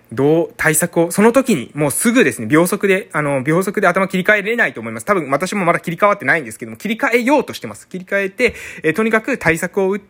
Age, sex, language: 20-39, male, Japanese